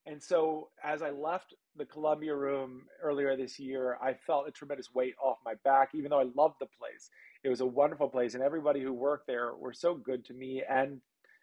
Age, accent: 40-59, American